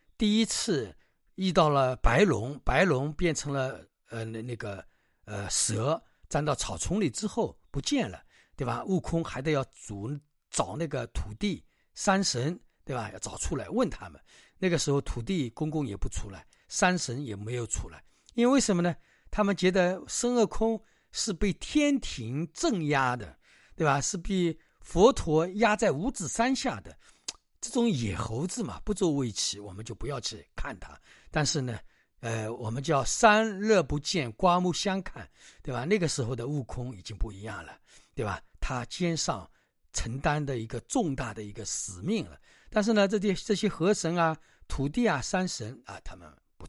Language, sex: Chinese, male